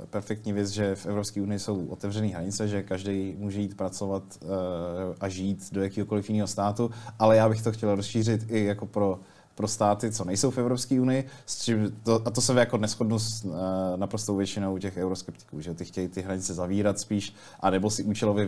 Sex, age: male, 20-39